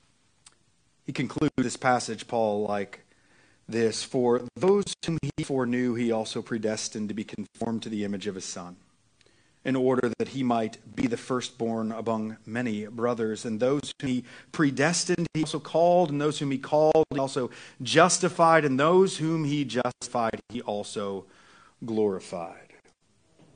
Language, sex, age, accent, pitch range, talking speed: English, male, 40-59, American, 115-160 Hz, 150 wpm